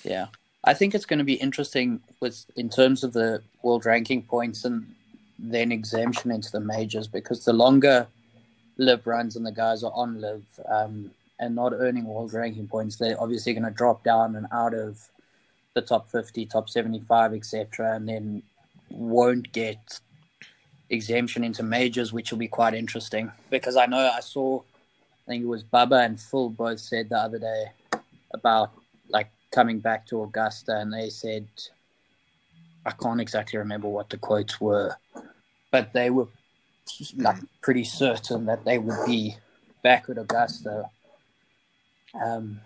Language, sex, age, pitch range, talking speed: English, male, 20-39, 110-120 Hz, 160 wpm